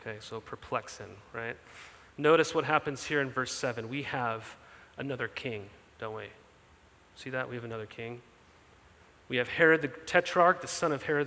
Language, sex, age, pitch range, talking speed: English, male, 30-49, 145-185 Hz, 170 wpm